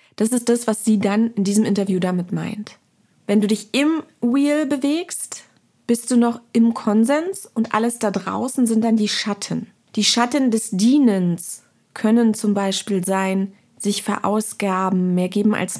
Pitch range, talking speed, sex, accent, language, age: 185-225 Hz, 165 wpm, female, German, German, 30-49